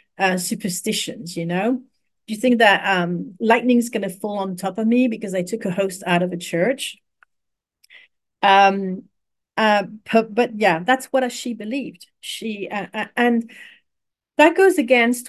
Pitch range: 185-240 Hz